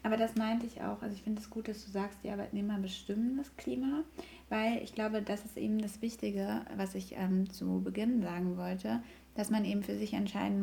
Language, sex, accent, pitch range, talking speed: German, female, German, 175-215 Hz, 220 wpm